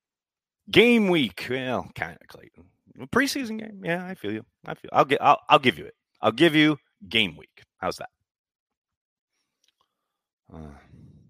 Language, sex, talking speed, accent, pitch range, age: English, male, 160 wpm, American, 80-105 Hz, 30-49